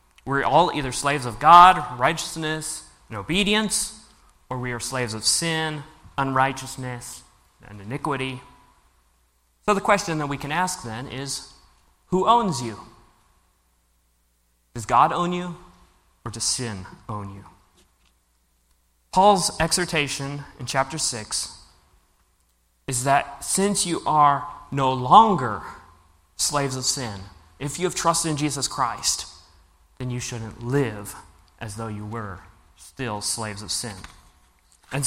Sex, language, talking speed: male, English, 125 wpm